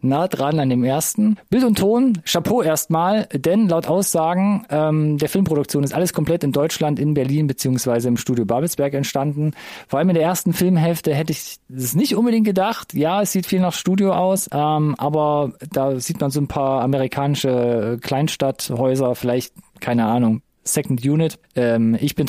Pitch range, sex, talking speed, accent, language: 125-165 Hz, male, 175 wpm, German, German